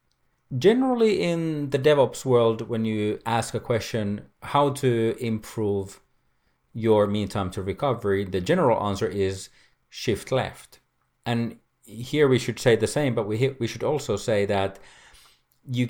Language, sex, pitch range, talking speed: English, male, 100-125 Hz, 145 wpm